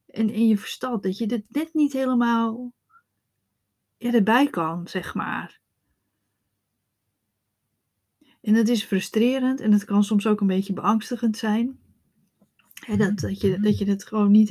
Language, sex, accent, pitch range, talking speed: Dutch, female, Dutch, 200-235 Hz, 155 wpm